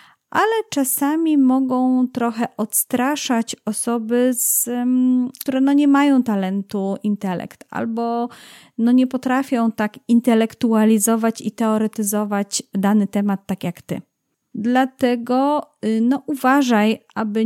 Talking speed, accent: 105 wpm, native